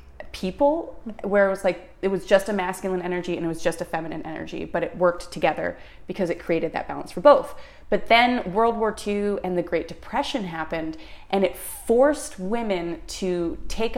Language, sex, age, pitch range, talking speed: English, female, 30-49, 175-215 Hz, 195 wpm